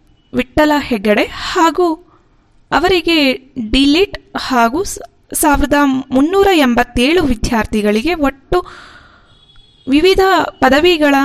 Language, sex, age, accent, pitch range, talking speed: Kannada, female, 20-39, native, 225-330 Hz, 70 wpm